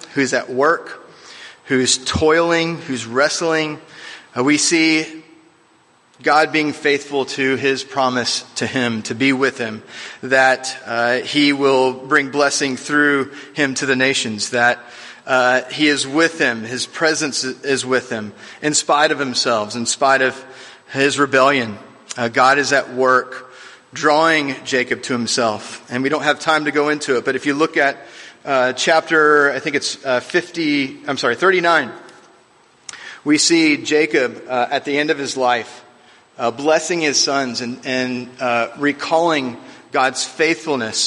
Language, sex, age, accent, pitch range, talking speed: English, male, 30-49, American, 125-150 Hz, 155 wpm